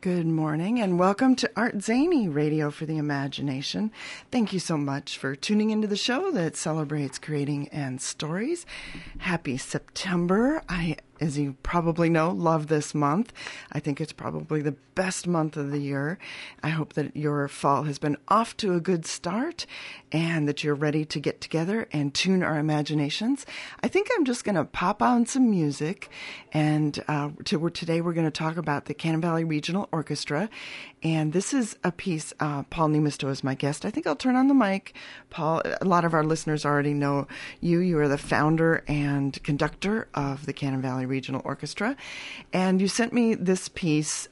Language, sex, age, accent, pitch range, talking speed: English, female, 40-59, American, 145-195 Hz, 190 wpm